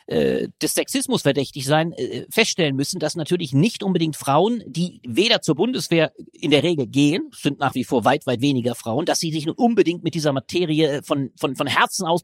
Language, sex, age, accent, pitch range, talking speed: German, male, 40-59, German, 135-200 Hz, 195 wpm